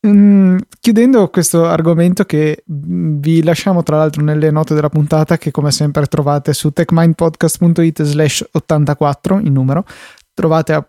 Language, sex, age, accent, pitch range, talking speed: Italian, male, 20-39, native, 150-170 Hz, 130 wpm